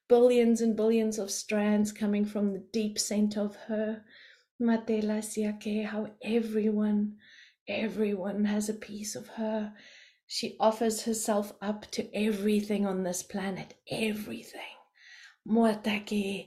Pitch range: 195-215 Hz